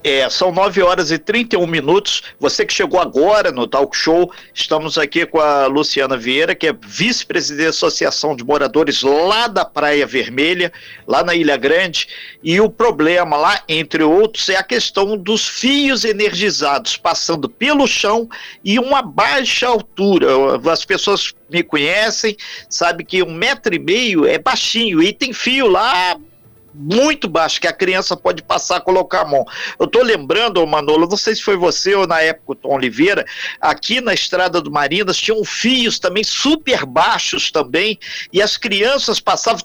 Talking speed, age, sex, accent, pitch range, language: 165 wpm, 50-69, male, Brazilian, 165-225 Hz, Portuguese